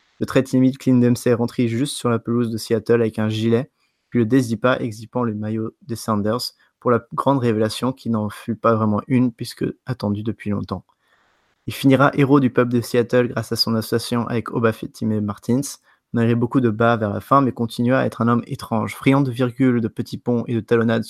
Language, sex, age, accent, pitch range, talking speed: French, male, 20-39, French, 115-130 Hz, 215 wpm